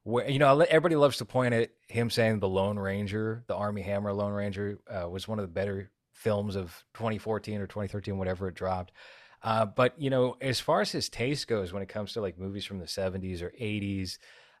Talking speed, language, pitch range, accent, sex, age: 220 wpm, English, 95-115 Hz, American, male, 30-49